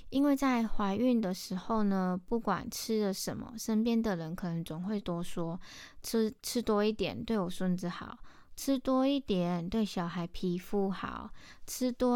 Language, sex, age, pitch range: Chinese, female, 20-39, 180-220 Hz